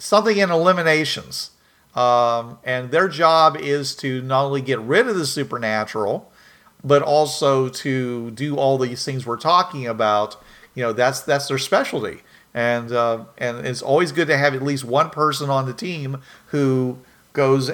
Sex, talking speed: male, 165 wpm